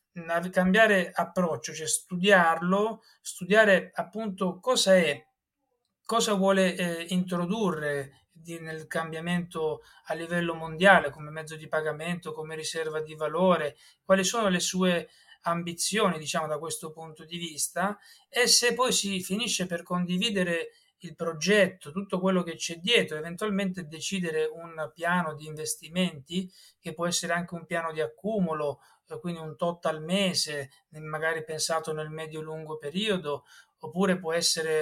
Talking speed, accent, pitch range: 135 wpm, native, 160-195 Hz